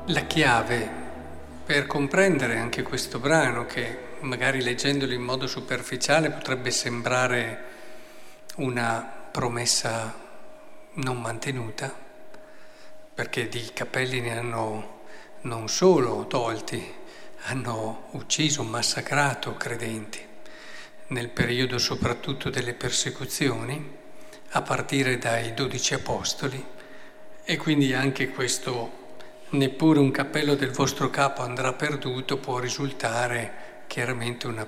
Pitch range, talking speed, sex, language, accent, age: 120-165 Hz, 100 wpm, male, Italian, native, 50-69